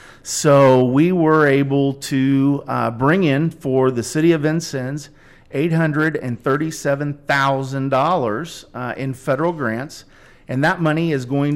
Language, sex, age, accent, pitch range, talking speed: English, male, 40-59, American, 125-155 Hz, 120 wpm